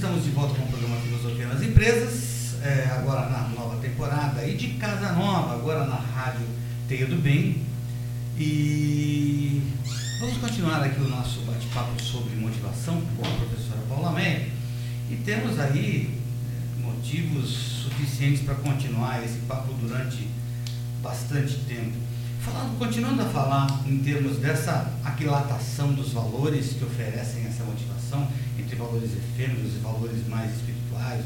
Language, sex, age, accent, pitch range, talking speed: Portuguese, male, 60-79, Brazilian, 120-135 Hz, 130 wpm